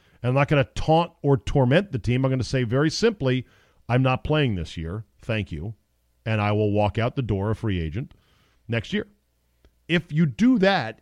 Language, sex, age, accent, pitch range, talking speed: English, male, 40-59, American, 105-145 Hz, 205 wpm